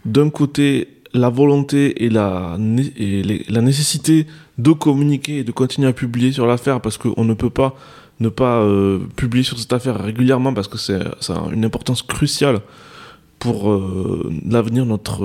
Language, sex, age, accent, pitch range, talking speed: French, male, 20-39, French, 110-140 Hz, 175 wpm